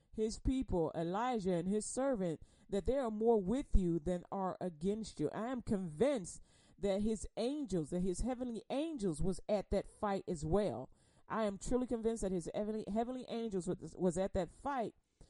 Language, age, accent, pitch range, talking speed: English, 40-59, American, 185-245 Hz, 180 wpm